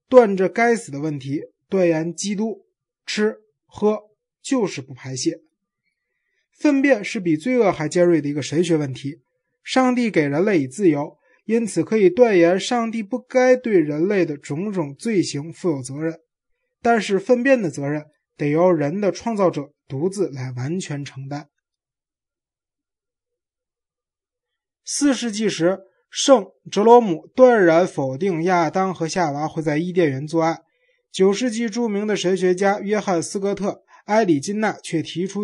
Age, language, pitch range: 20-39, Chinese, 160-215 Hz